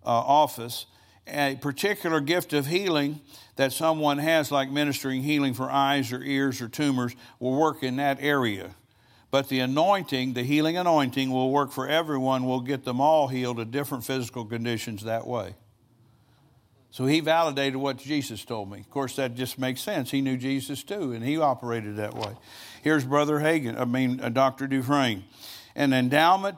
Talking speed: 175 wpm